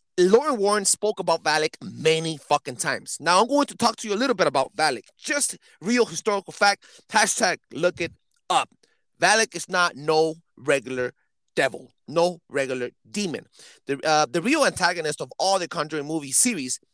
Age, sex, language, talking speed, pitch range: 30-49, male, English, 170 wpm, 150-205 Hz